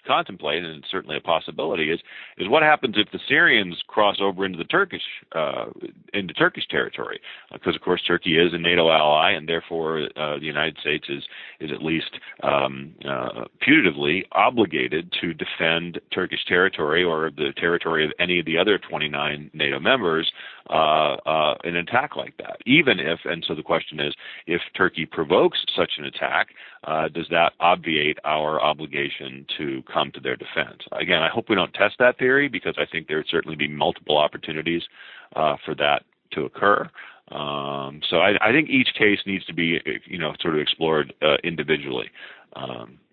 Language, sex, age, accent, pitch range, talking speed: English, male, 40-59, American, 75-100 Hz, 180 wpm